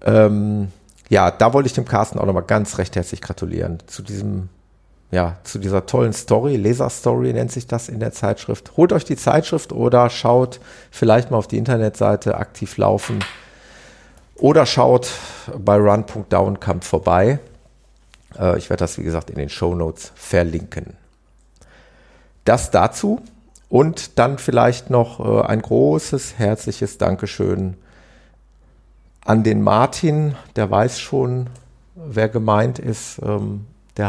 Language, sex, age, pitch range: German, male, 40-59, 100-125 Hz